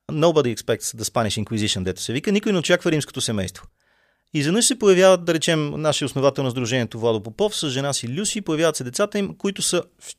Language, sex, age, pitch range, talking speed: Bulgarian, male, 30-49, 120-160 Hz, 210 wpm